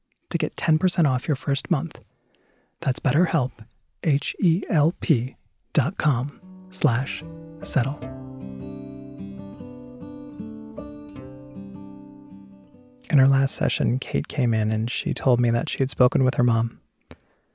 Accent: American